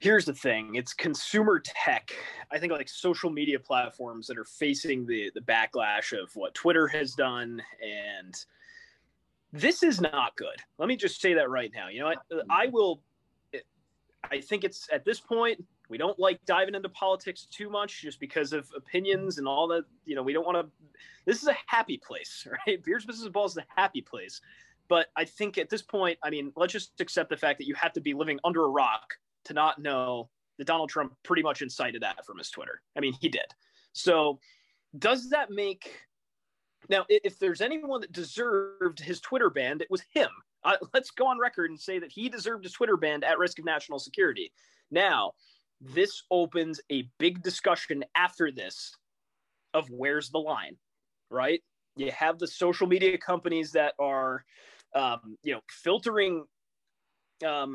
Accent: American